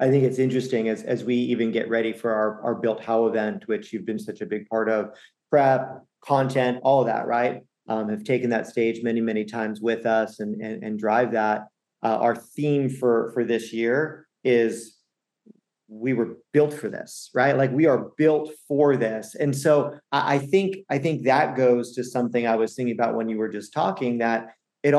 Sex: male